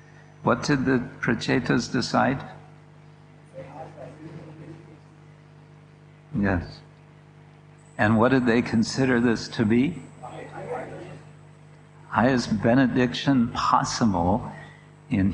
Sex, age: male, 60-79